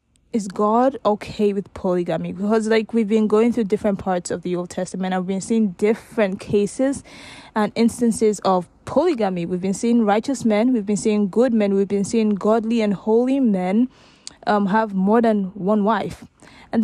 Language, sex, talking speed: English, female, 180 wpm